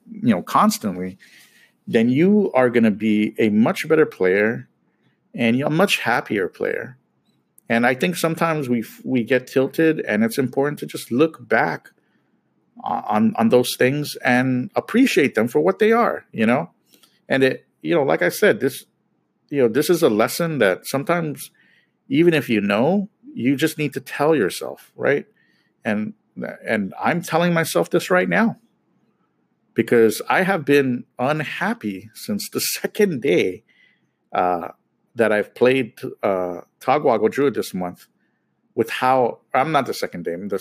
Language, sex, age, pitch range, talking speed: English, male, 50-69, 115-190 Hz, 160 wpm